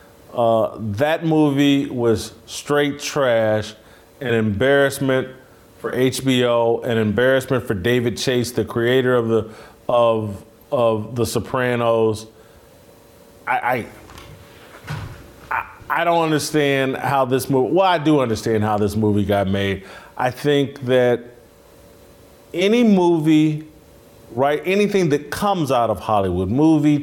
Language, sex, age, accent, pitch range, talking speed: English, male, 40-59, American, 115-150 Hz, 120 wpm